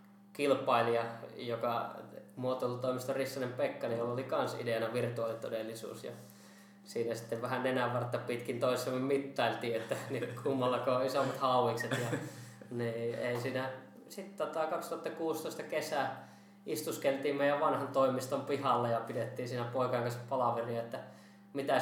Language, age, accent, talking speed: Finnish, 20-39, native, 115 wpm